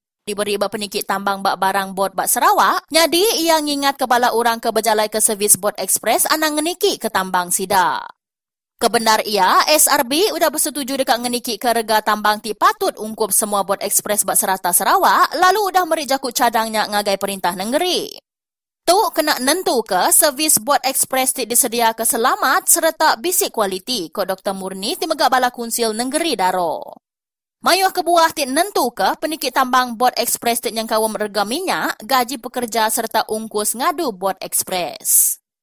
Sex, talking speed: female, 155 wpm